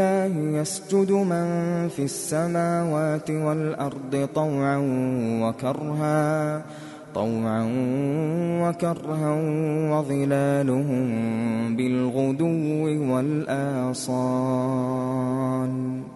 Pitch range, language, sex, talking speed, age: 130-155 Hz, Arabic, male, 50 wpm, 20-39